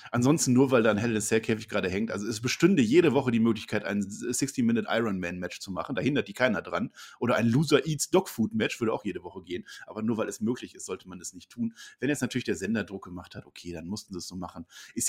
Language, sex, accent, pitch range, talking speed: German, male, German, 105-135 Hz, 245 wpm